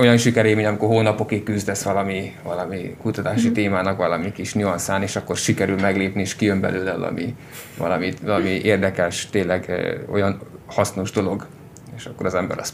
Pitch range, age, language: 100-115 Hz, 20-39, Hungarian